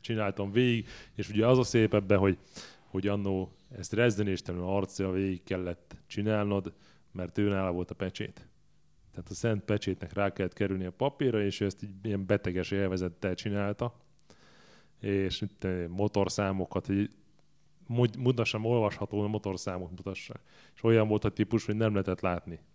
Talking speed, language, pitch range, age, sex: 150 wpm, English, 95-115 Hz, 30-49, male